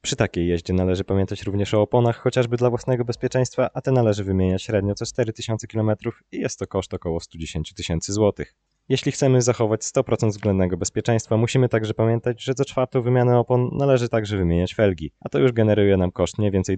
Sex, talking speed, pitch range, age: male, 195 wpm, 90-115 Hz, 20-39